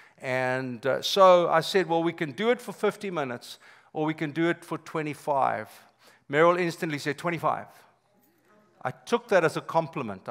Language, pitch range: English, 135-165 Hz